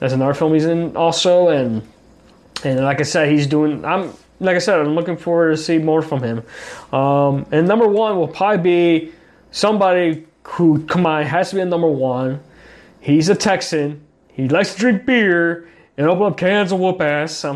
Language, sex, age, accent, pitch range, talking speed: English, male, 20-39, American, 145-175 Hz, 200 wpm